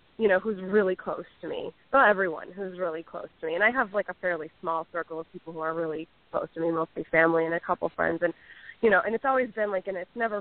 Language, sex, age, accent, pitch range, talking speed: English, female, 20-39, American, 170-210 Hz, 270 wpm